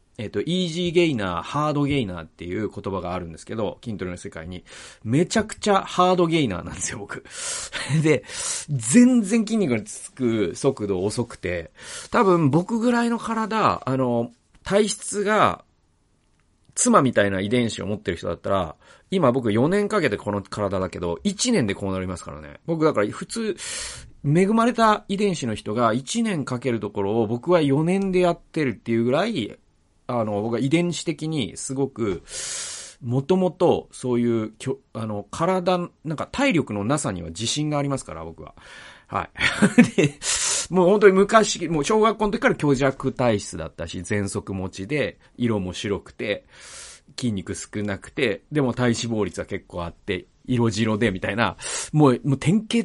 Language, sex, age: Japanese, male, 40-59